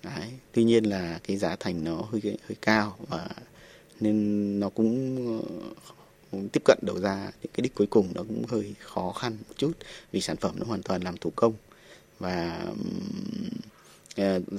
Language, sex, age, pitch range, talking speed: Vietnamese, male, 20-39, 95-110 Hz, 175 wpm